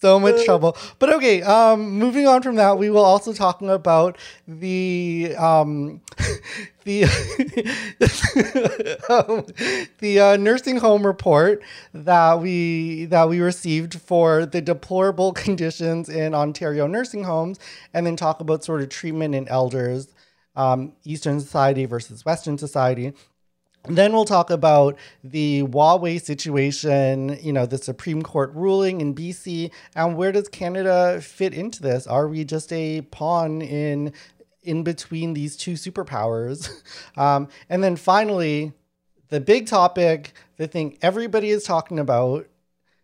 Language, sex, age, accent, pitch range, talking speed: English, male, 30-49, American, 145-185 Hz, 130 wpm